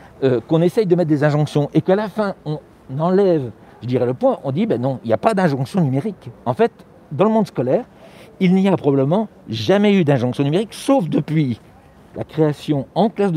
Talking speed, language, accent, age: 210 wpm, French, French, 60-79